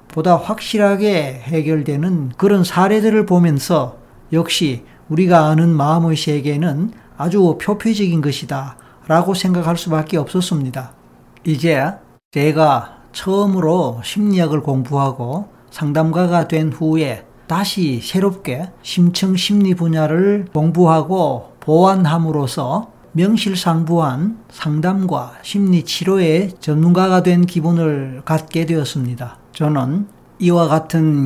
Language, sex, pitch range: Korean, male, 145-180 Hz